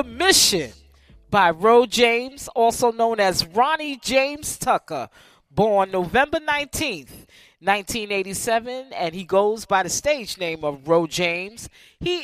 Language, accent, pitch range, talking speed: English, American, 185-265 Hz, 125 wpm